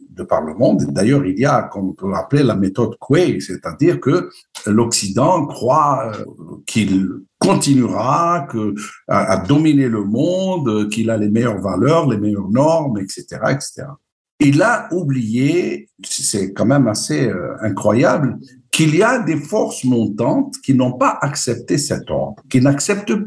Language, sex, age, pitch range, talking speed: French, male, 60-79, 100-145 Hz, 145 wpm